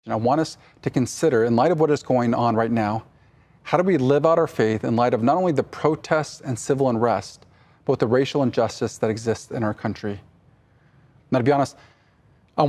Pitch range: 115-140 Hz